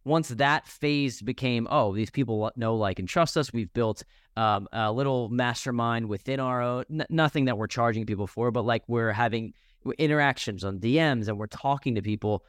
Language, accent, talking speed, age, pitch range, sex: English, American, 185 wpm, 20-39, 110-135 Hz, male